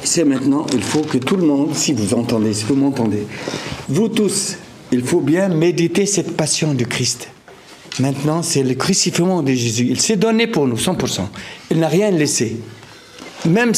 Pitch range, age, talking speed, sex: 120-165 Hz, 60-79, 180 wpm, male